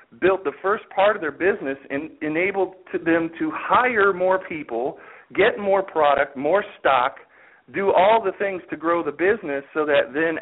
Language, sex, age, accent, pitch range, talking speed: English, male, 40-59, American, 140-190 Hz, 180 wpm